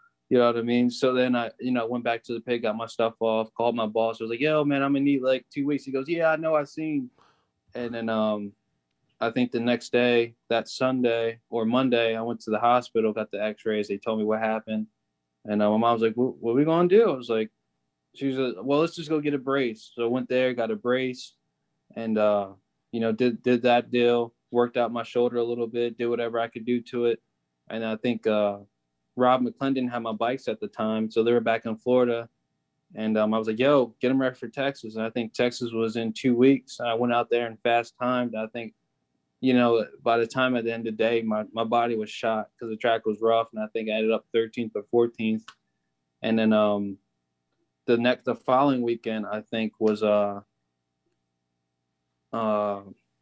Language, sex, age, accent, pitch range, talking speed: English, male, 20-39, American, 110-125 Hz, 235 wpm